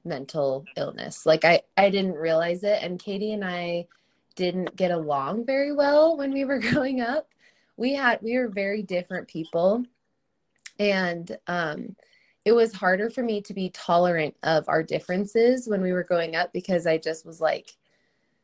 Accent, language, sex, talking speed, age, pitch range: American, English, female, 170 wpm, 20-39, 160-205 Hz